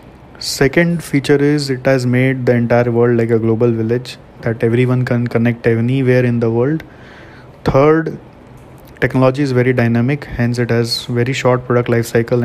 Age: 20-39